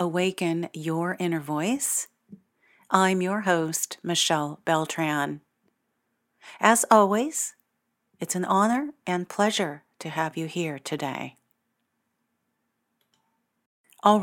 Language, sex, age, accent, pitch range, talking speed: English, female, 50-69, American, 165-225 Hz, 95 wpm